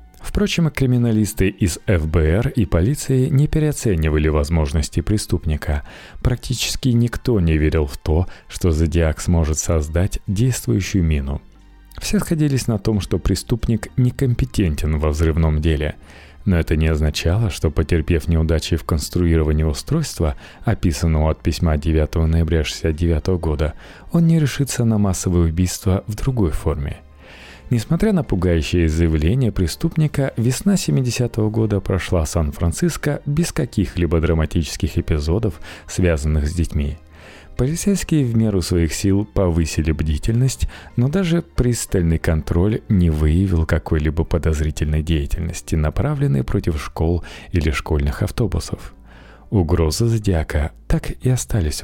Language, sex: Russian, male